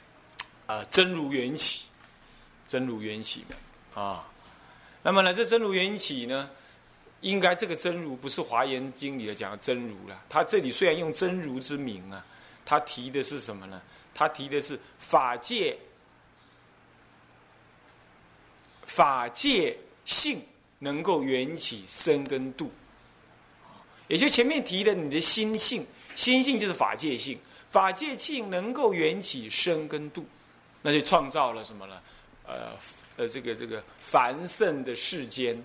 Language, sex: Chinese, male